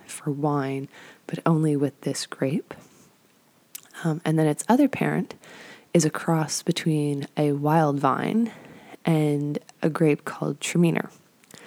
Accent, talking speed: American, 130 wpm